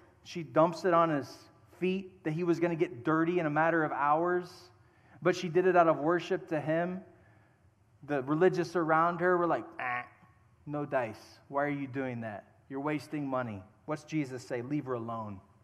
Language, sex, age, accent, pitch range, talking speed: English, male, 30-49, American, 120-180 Hz, 190 wpm